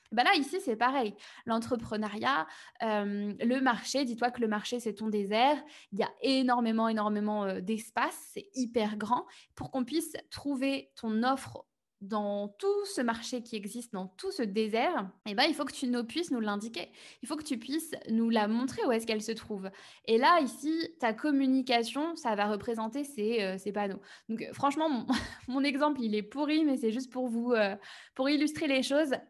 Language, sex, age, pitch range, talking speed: French, female, 20-39, 225-275 Hz, 190 wpm